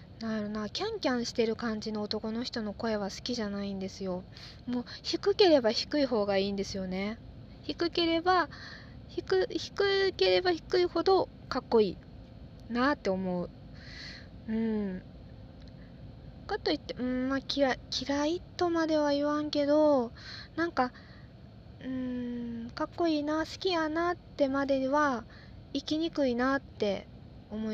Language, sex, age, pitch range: Japanese, female, 20-39, 210-330 Hz